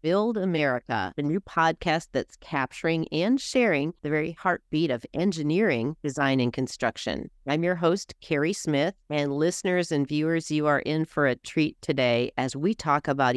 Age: 40-59